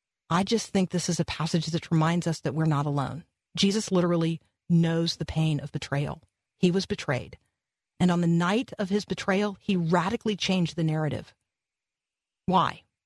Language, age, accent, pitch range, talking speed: English, 40-59, American, 165-205 Hz, 170 wpm